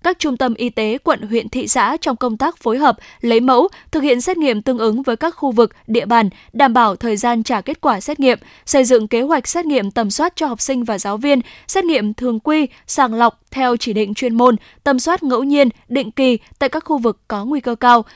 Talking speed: 250 wpm